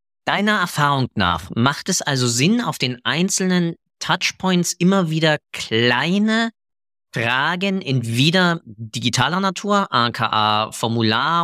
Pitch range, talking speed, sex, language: 120-170 Hz, 110 wpm, male, German